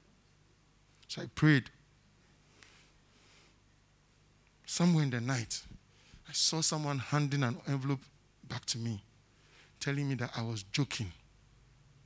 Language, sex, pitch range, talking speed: English, male, 125-165 Hz, 105 wpm